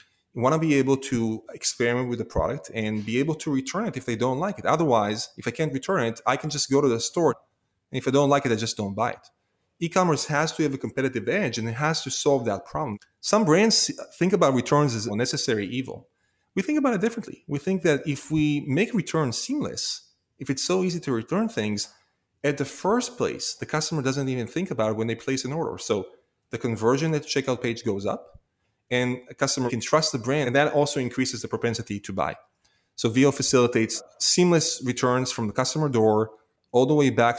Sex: male